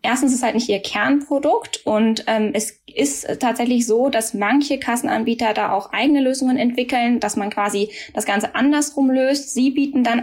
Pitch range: 205-245 Hz